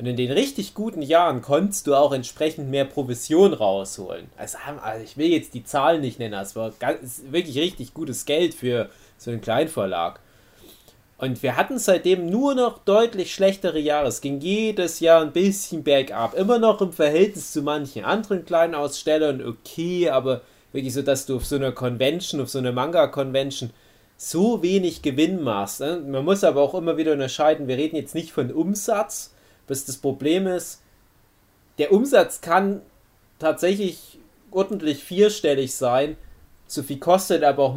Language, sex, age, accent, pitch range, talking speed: German, male, 30-49, German, 125-170 Hz, 165 wpm